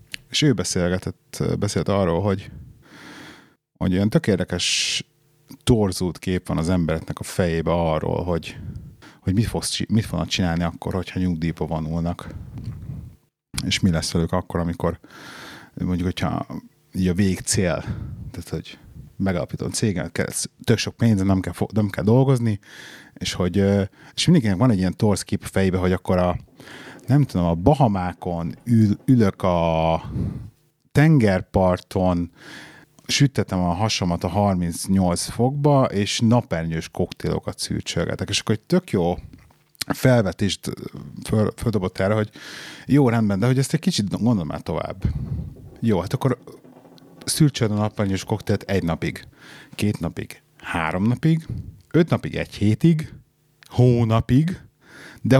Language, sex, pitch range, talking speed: Hungarian, male, 90-125 Hz, 130 wpm